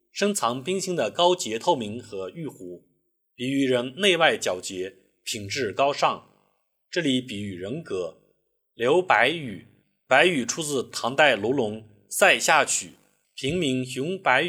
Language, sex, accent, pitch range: Chinese, male, native, 110-180 Hz